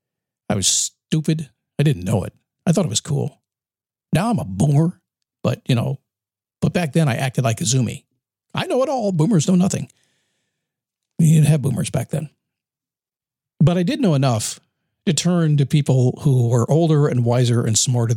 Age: 50-69